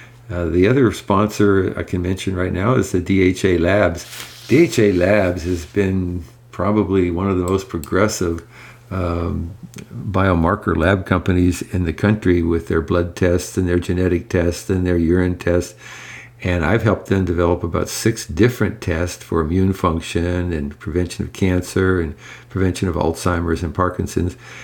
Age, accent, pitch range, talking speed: 50-69, American, 85-105 Hz, 155 wpm